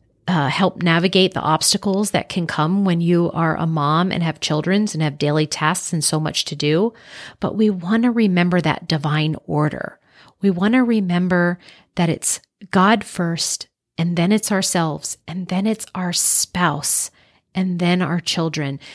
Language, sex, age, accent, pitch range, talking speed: English, female, 40-59, American, 165-210 Hz, 170 wpm